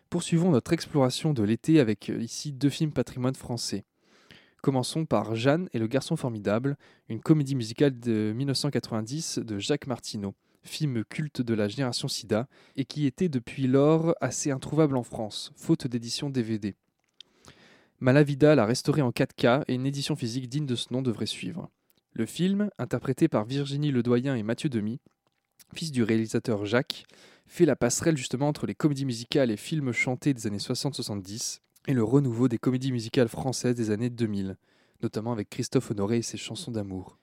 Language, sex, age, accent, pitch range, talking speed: French, male, 20-39, French, 115-145 Hz, 170 wpm